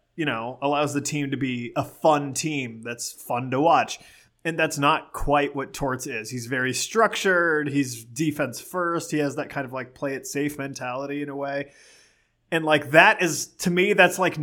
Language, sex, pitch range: English, male, 130-170 Hz